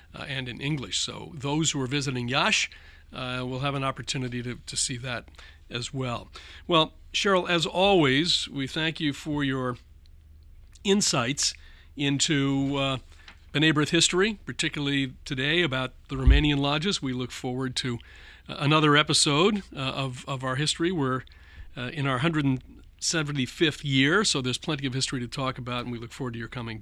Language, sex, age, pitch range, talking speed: English, male, 40-59, 120-160 Hz, 165 wpm